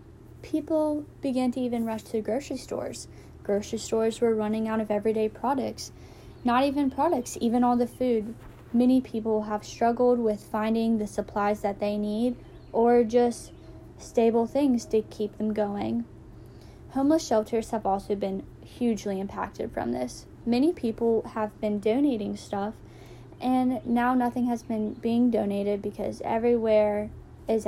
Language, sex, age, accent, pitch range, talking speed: English, female, 10-29, American, 205-245 Hz, 145 wpm